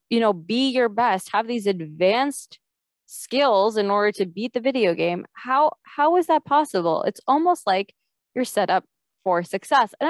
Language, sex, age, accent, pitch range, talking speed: English, female, 20-39, American, 180-240 Hz, 180 wpm